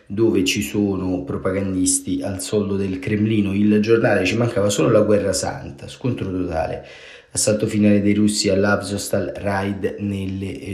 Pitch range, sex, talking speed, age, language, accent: 95-110 Hz, male, 140 wpm, 30-49, Italian, native